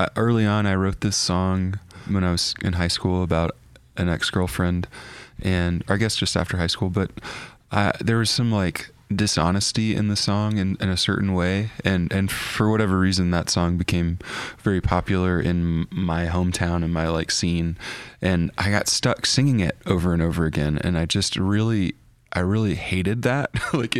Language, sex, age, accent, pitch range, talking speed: English, male, 20-39, American, 85-100 Hz, 180 wpm